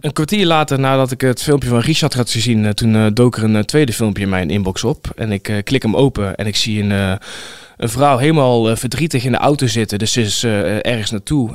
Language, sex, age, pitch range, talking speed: Dutch, male, 20-39, 110-135 Hz, 225 wpm